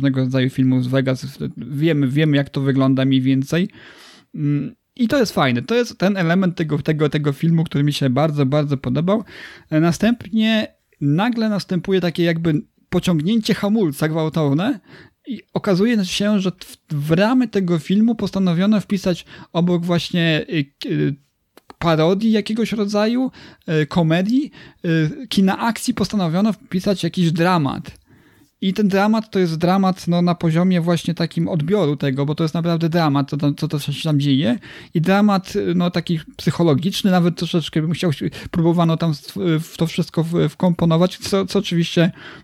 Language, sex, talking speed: Polish, male, 145 wpm